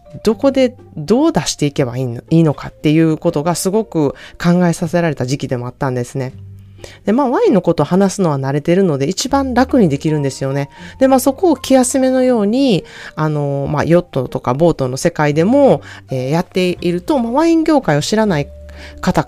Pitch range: 140-200 Hz